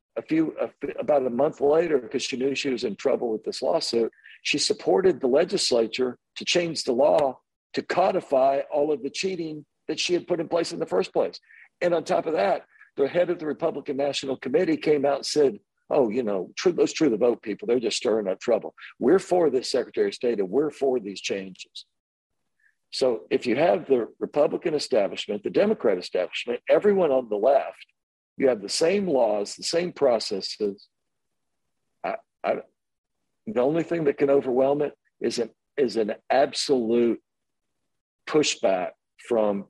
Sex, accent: male, American